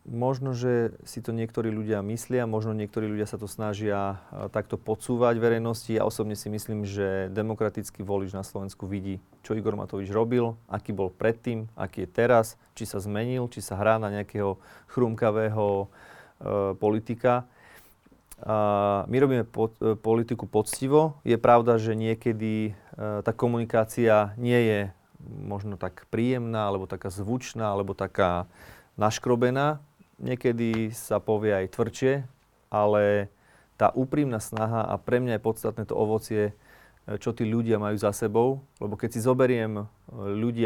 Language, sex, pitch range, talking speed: Slovak, male, 105-115 Hz, 140 wpm